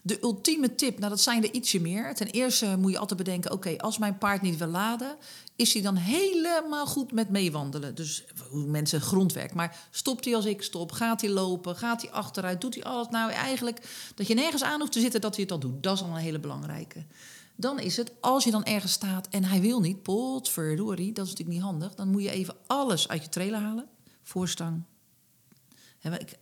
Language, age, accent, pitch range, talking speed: Dutch, 40-59, Dutch, 170-225 Hz, 220 wpm